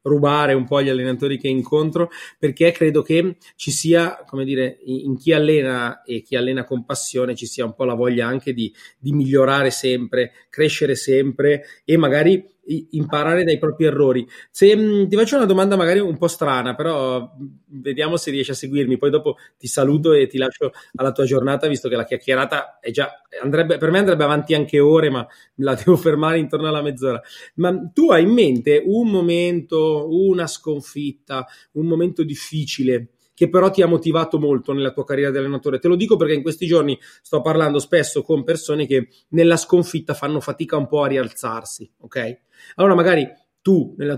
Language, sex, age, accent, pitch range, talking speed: Italian, male, 30-49, native, 135-165 Hz, 185 wpm